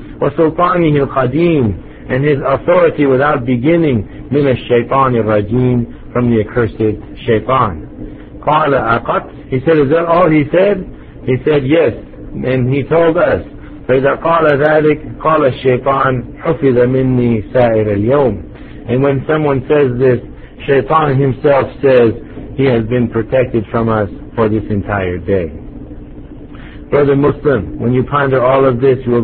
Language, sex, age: English, male, 60-79